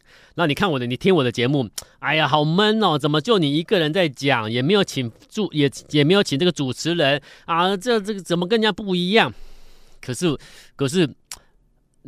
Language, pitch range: Chinese, 125-170 Hz